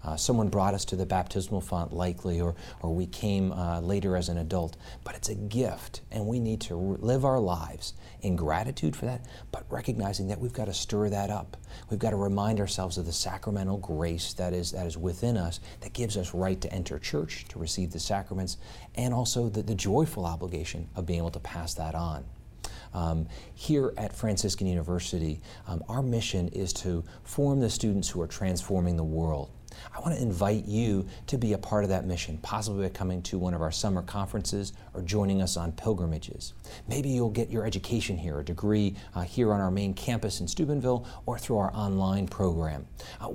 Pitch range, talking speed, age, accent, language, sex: 90-110 Hz, 205 wpm, 40-59, American, English, male